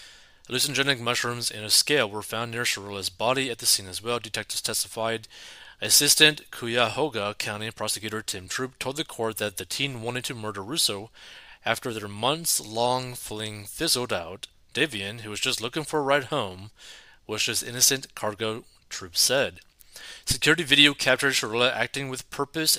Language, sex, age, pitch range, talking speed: English, male, 30-49, 105-130 Hz, 160 wpm